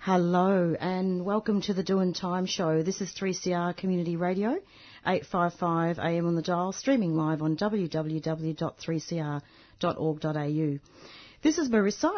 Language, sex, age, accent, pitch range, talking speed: English, female, 40-59, Australian, 165-205 Hz, 120 wpm